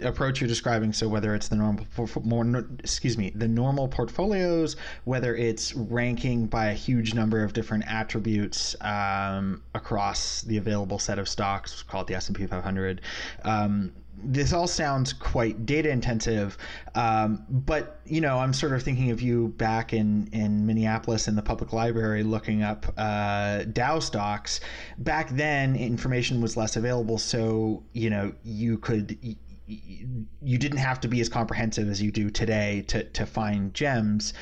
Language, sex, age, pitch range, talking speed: English, male, 20-39, 105-125 Hz, 165 wpm